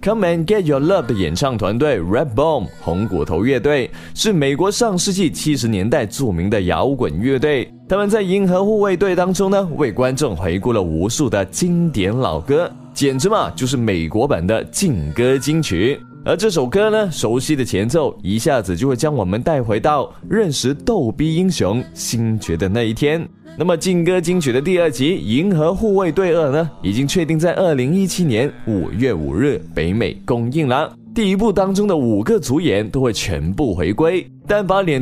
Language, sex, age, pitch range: Chinese, male, 20-39, 115-180 Hz